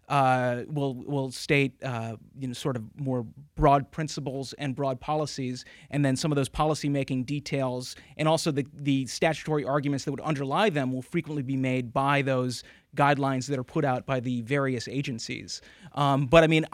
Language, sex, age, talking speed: English, male, 30-49, 185 wpm